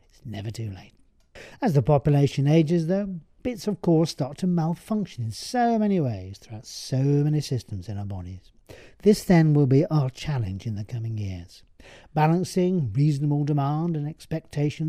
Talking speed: 160 wpm